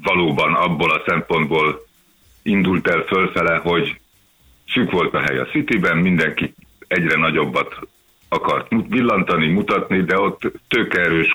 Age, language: 50-69, Hungarian